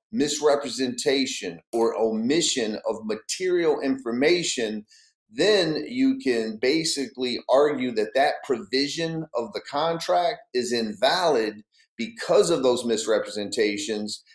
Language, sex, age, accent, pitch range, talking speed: English, male, 40-59, American, 110-135 Hz, 95 wpm